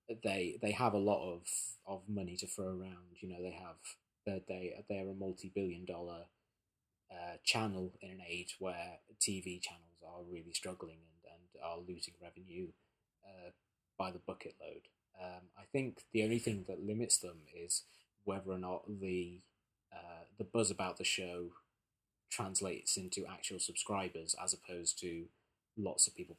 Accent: British